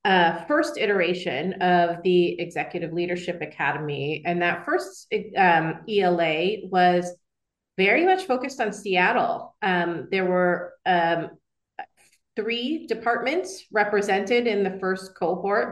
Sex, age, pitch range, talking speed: female, 30-49, 170-200 Hz, 115 wpm